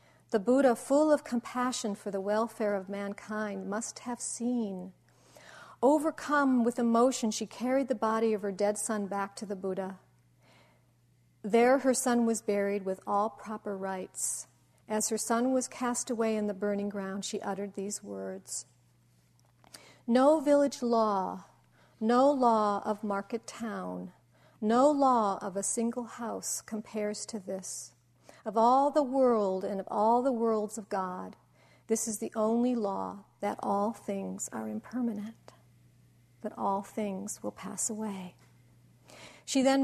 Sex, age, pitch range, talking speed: female, 50-69, 195-230 Hz, 145 wpm